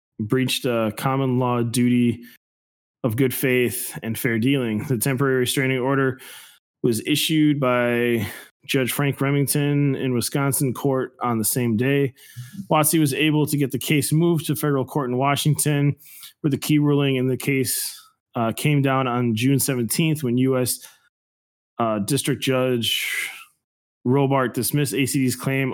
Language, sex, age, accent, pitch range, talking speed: English, male, 20-39, American, 120-140 Hz, 150 wpm